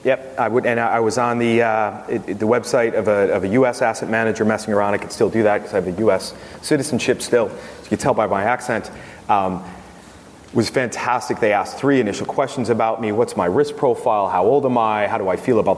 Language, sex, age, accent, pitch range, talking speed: English, male, 30-49, American, 110-135 Hz, 245 wpm